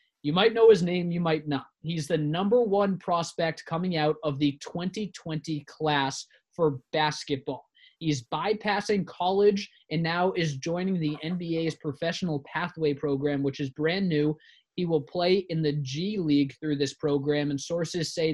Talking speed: 165 wpm